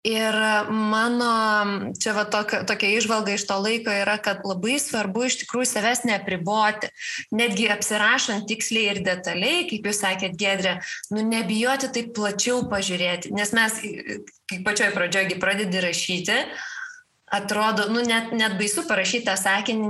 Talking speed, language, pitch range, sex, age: 140 wpm, English, 200-235 Hz, female, 20-39